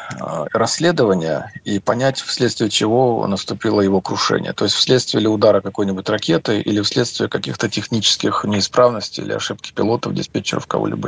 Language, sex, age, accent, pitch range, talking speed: Russian, male, 50-69, native, 105-135 Hz, 135 wpm